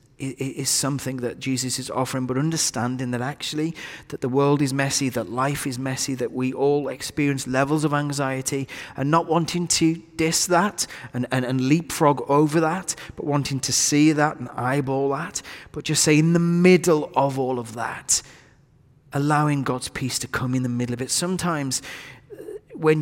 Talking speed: 175 wpm